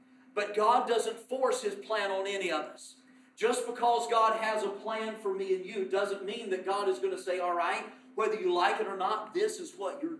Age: 40-59